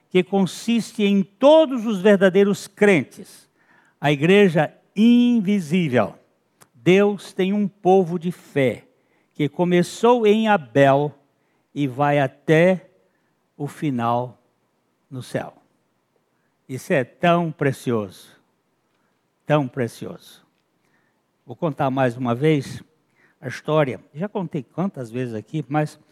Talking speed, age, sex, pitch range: 105 wpm, 60-79, male, 130-185 Hz